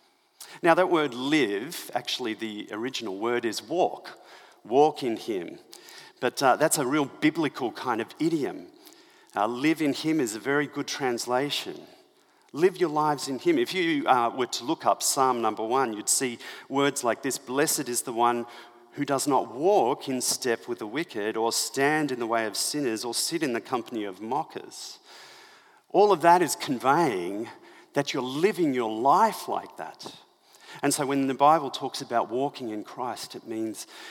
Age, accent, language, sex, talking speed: 40-59, Australian, English, male, 180 wpm